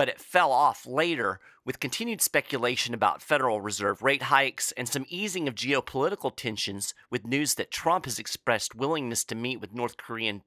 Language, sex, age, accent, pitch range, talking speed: English, male, 40-59, American, 105-145 Hz, 180 wpm